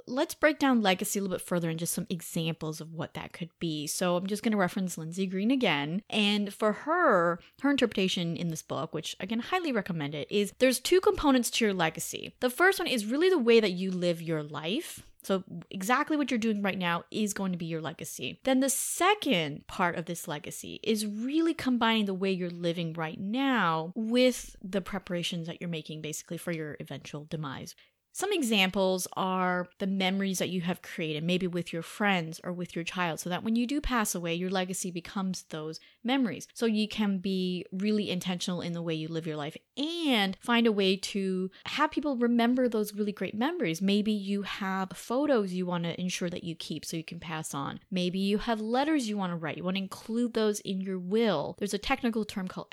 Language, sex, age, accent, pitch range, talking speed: English, female, 30-49, American, 175-230 Hz, 215 wpm